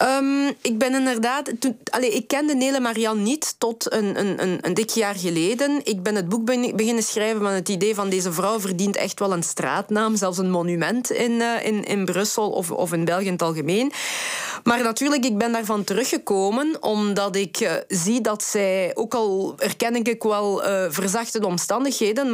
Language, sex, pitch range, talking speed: Dutch, female, 185-230 Hz, 175 wpm